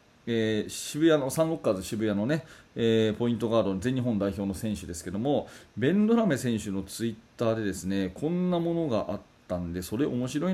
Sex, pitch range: male, 110-160 Hz